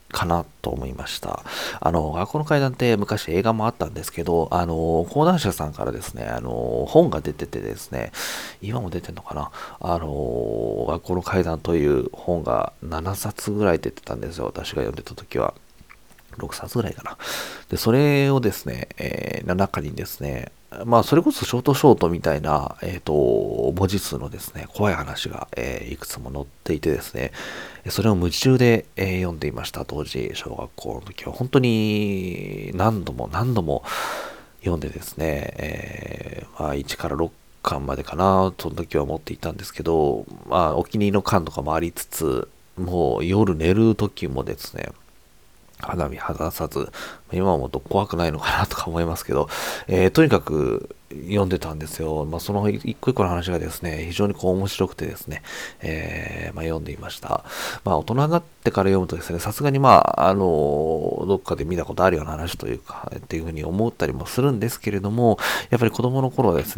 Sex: male